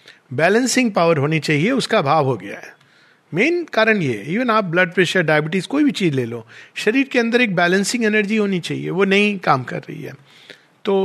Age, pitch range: 50-69, 150-205 Hz